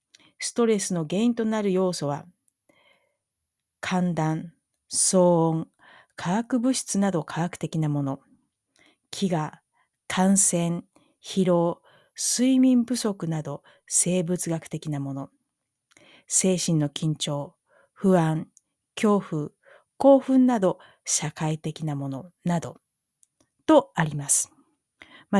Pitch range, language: 160-225 Hz, Japanese